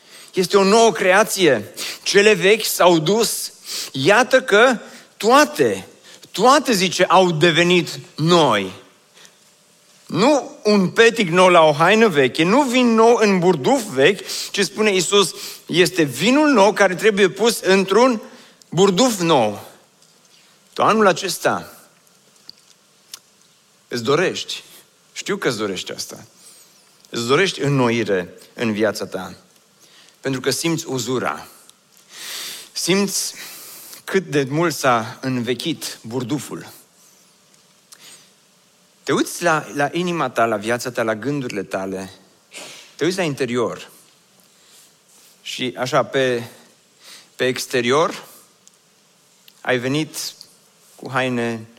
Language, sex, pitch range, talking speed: Romanian, male, 130-200 Hz, 110 wpm